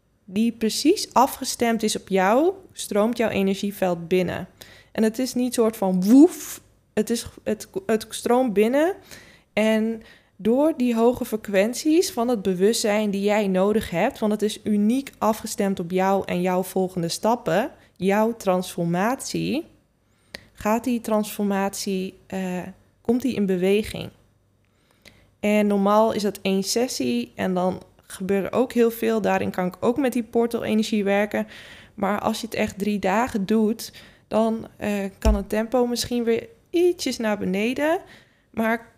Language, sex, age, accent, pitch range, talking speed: Dutch, female, 20-39, Dutch, 195-235 Hz, 145 wpm